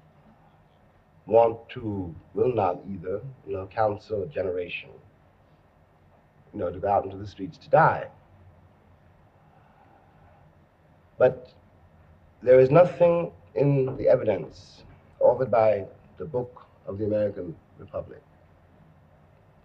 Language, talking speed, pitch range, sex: English, 105 wpm, 90-135 Hz, male